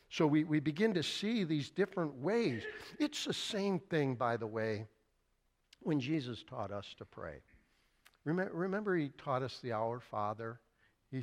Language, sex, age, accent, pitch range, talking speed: English, male, 60-79, American, 135-220 Hz, 165 wpm